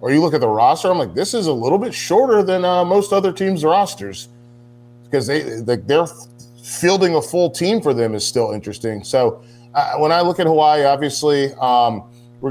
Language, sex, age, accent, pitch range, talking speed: English, male, 30-49, American, 120-150 Hz, 205 wpm